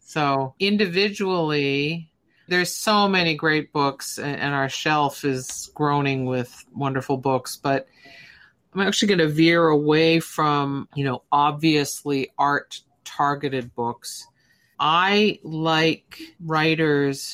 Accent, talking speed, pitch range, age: American, 110 wpm, 135-160 Hz, 50-69